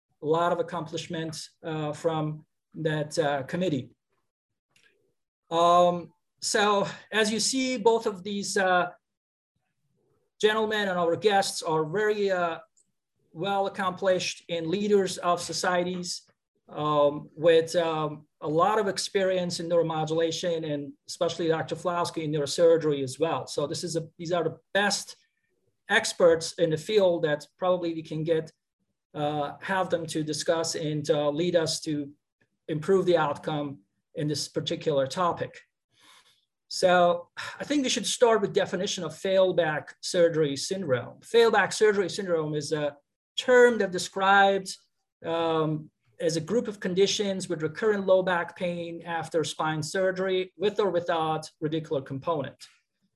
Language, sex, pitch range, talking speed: English, male, 160-195 Hz, 135 wpm